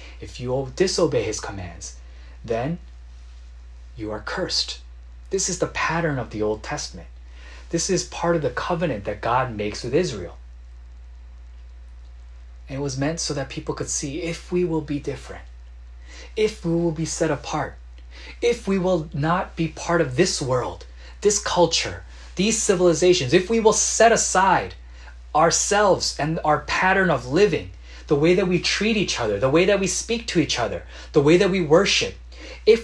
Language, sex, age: Korean, male, 30-49